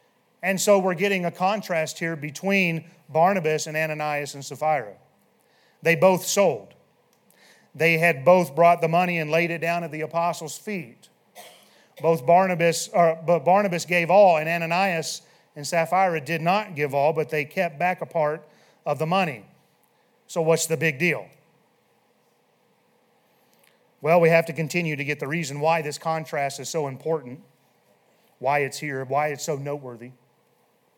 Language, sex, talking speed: English, male, 155 wpm